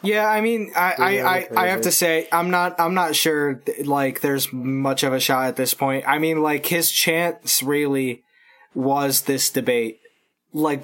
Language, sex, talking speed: English, male, 190 wpm